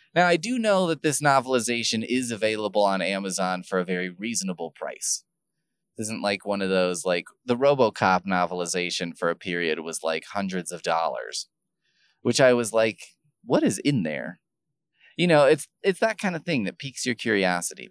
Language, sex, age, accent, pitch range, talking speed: English, male, 20-39, American, 95-145 Hz, 180 wpm